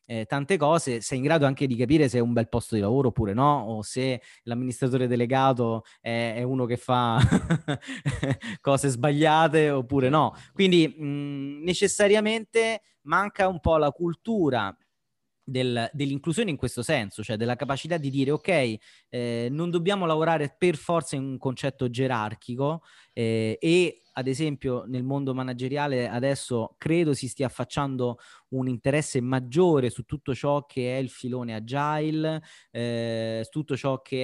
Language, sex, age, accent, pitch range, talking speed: Italian, male, 30-49, native, 125-150 Hz, 150 wpm